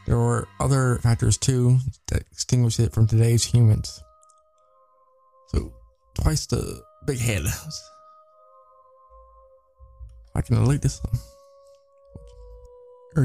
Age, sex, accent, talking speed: 20-39, male, American, 100 wpm